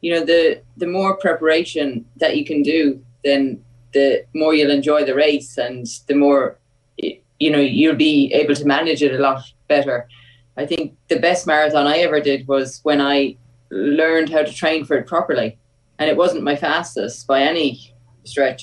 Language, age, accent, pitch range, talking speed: English, 20-39, Irish, 130-155 Hz, 185 wpm